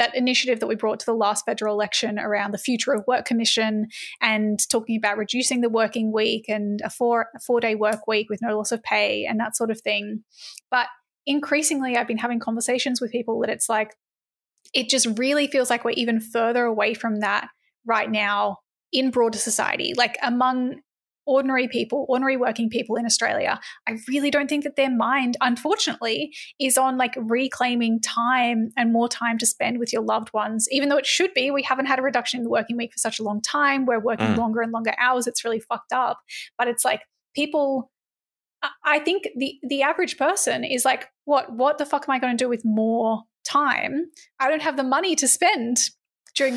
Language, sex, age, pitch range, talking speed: English, female, 20-39, 225-270 Hz, 205 wpm